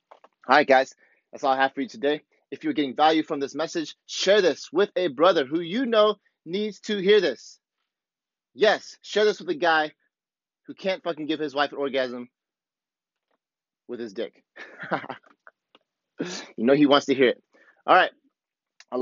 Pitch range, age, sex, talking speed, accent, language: 130-170 Hz, 30-49, male, 175 wpm, American, English